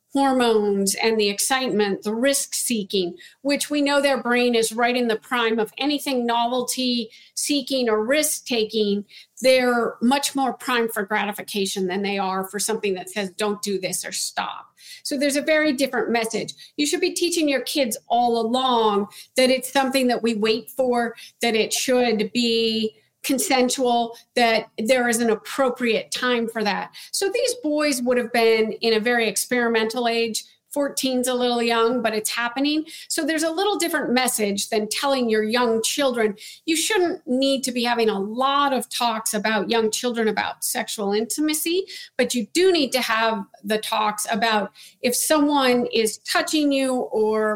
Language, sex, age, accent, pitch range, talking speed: English, female, 50-69, American, 220-270 Hz, 170 wpm